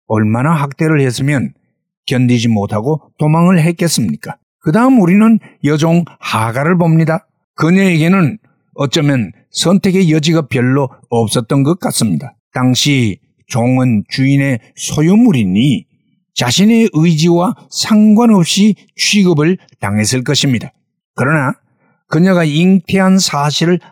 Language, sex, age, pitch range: Korean, male, 60-79, 130-185 Hz